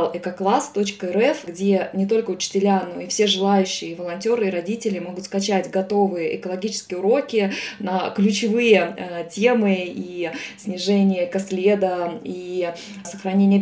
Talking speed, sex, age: 120 wpm, female, 20-39